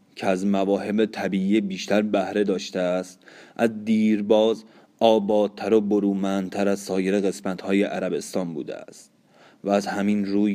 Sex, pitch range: male, 95-105 Hz